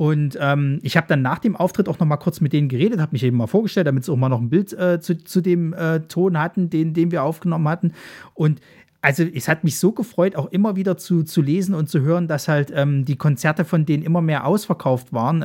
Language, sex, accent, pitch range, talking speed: German, male, German, 145-175 Hz, 255 wpm